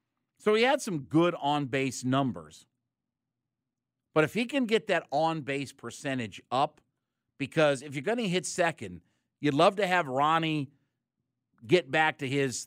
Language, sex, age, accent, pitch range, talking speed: English, male, 50-69, American, 130-160 Hz, 150 wpm